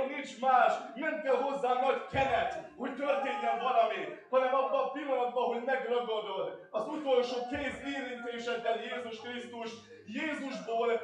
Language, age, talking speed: Hungarian, 20-39, 125 wpm